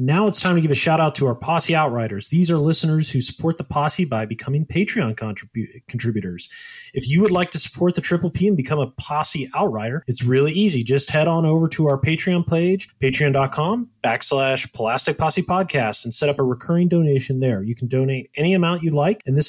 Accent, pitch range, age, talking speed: American, 130-165 Hz, 20-39, 215 wpm